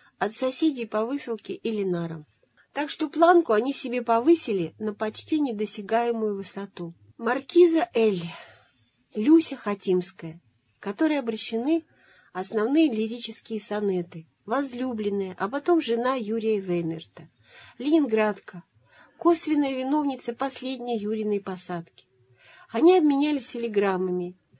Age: 40-59